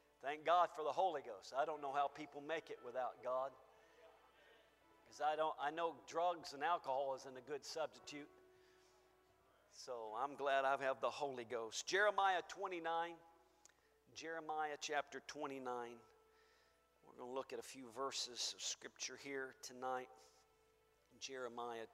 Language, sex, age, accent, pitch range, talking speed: English, male, 50-69, American, 125-155 Hz, 140 wpm